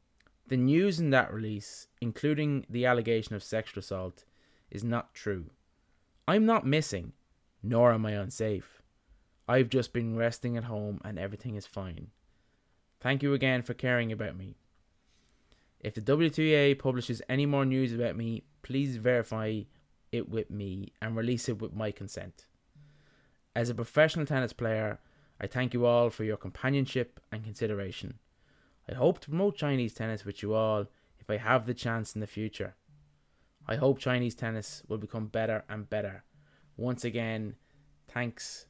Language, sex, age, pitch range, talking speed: English, male, 20-39, 105-130 Hz, 155 wpm